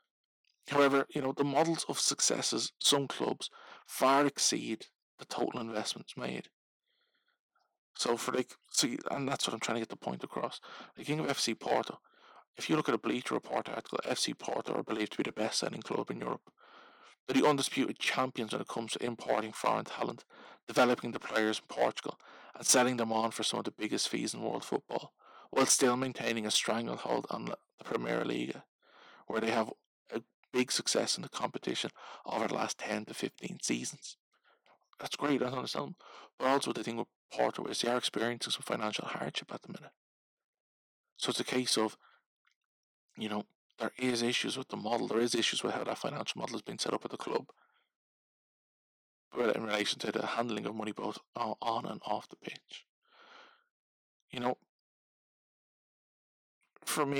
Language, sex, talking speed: English, male, 180 wpm